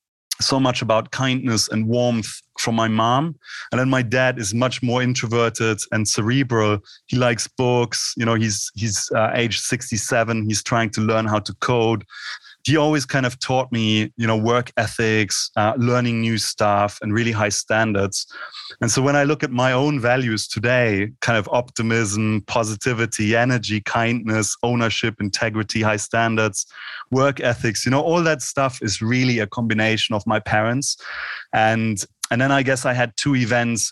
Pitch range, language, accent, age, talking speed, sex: 110-125 Hz, English, German, 30-49, 170 wpm, male